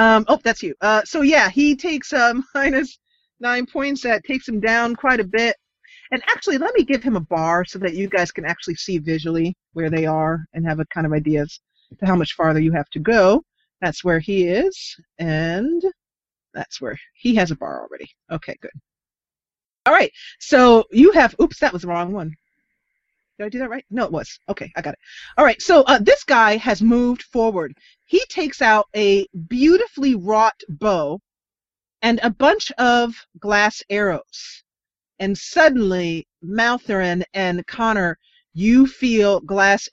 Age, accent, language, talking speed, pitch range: 30-49, American, English, 180 wpm, 180-255 Hz